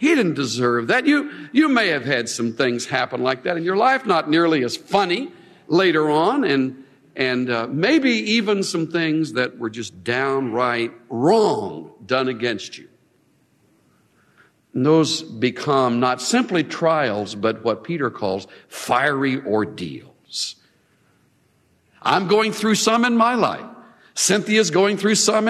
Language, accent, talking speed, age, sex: English, American, 145 wpm, 60-79, male